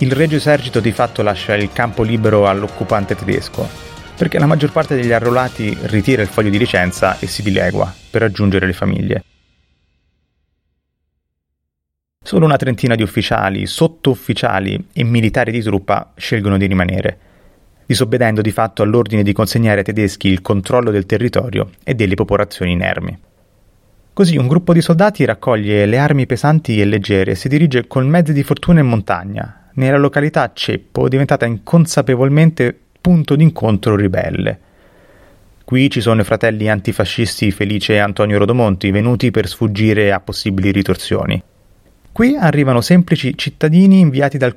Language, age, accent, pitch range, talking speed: Italian, 30-49, native, 100-135 Hz, 145 wpm